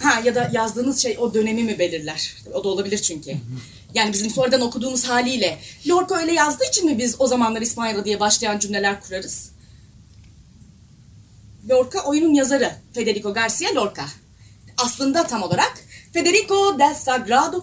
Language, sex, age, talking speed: Turkish, female, 30-49, 150 wpm